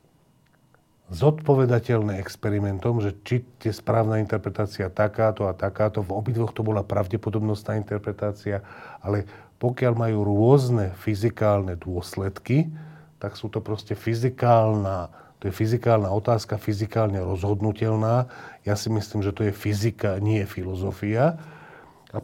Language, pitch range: Slovak, 105-120 Hz